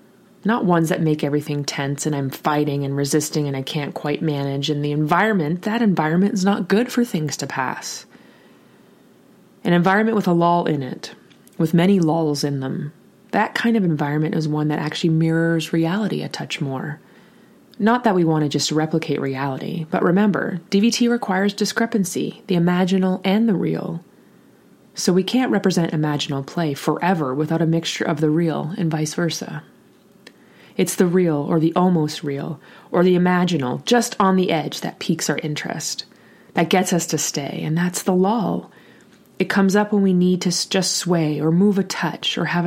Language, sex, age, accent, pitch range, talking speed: English, female, 20-39, American, 155-190 Hz, 180 wpm